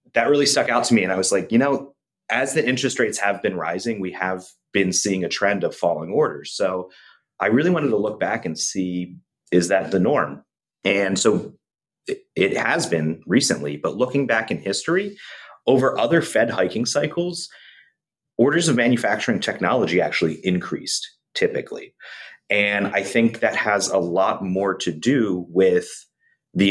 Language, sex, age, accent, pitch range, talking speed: English, male, 30-49, American, 90-125 Hz, 170 wpm